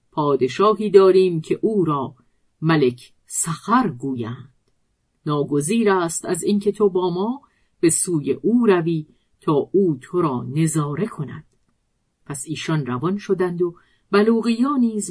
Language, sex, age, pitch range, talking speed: Persian, female, 50-69, 150-200 Hz, 125 wpm